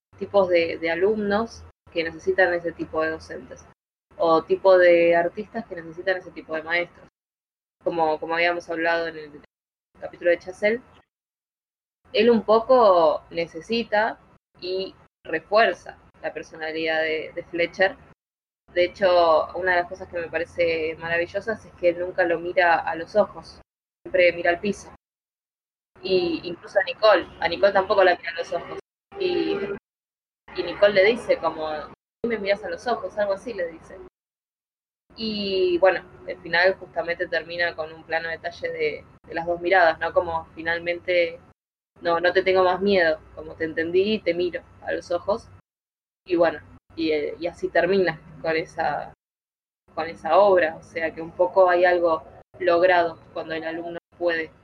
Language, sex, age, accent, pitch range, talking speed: Spanish, female, 20-39, Argentinian, 165-190 Hz, 160 wpm